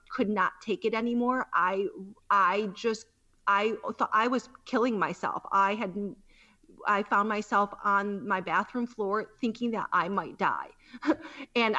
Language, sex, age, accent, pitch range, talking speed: English, female, 30-49, American, 190-230 Hz, 150 wpm